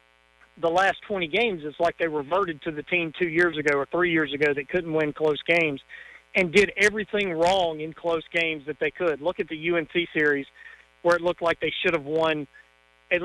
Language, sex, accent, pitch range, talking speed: English, male, American, 150-180 Hz, 215 wpm